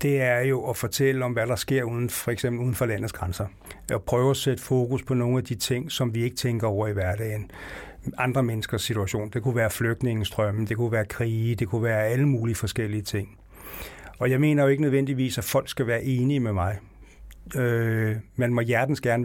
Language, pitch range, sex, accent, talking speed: Danish, 110-130 Hz, male, native, 210 wpm